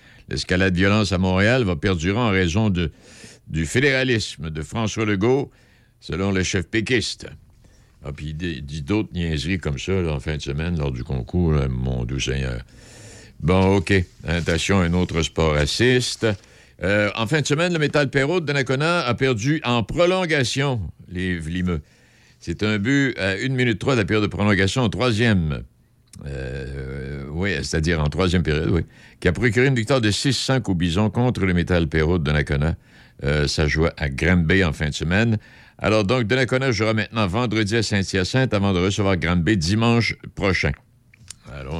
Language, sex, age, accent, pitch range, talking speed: French, male, 60-79, French, 85-120 Hz, 175 wpm